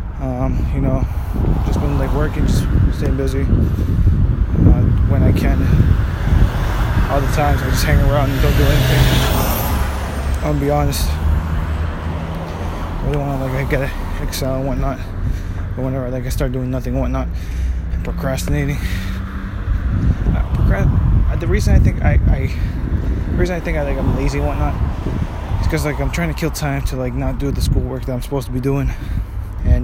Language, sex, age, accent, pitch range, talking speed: English, male, 20-39, American, 80-100 Hz, 180 wpm